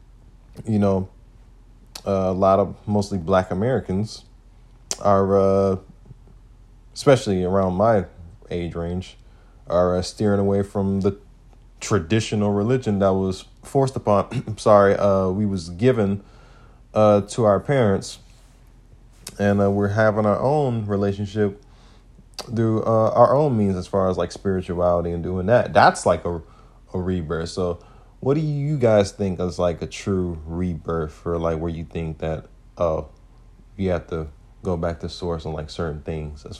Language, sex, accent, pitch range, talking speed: English, male, American, 85-105 Hz, 150 wpm